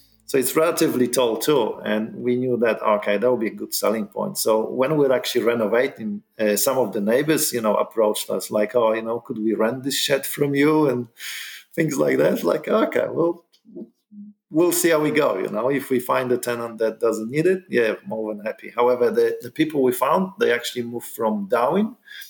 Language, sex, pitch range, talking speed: English, male, 110-155 Hz, 215 wpm